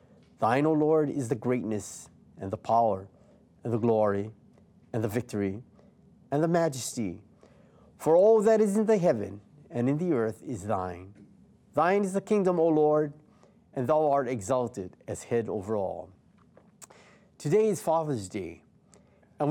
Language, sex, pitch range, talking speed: English, male, 120-175 Hz, 155 wpm